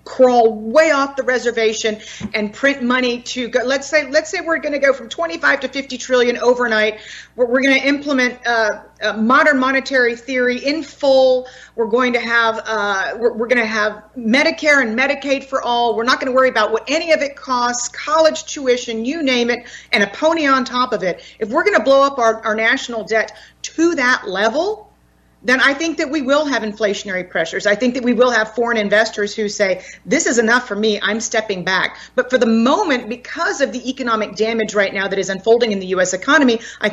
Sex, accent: female, American